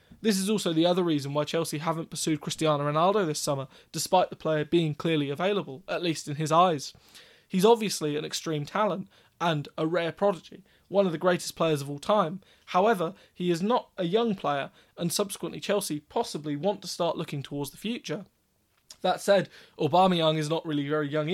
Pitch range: 150-195 Hz